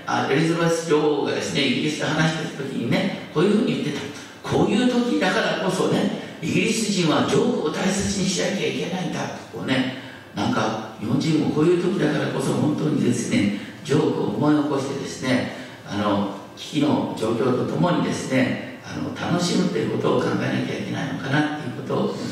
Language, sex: Japanese, male